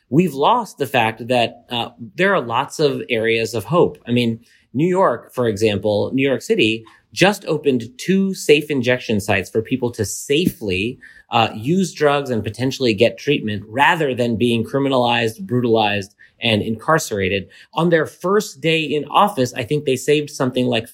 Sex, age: male, 30-49